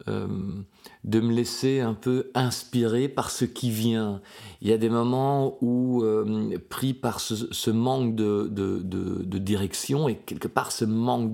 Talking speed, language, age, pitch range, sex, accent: 175 wpm, French, 40-59, 100-120 Hz, male, French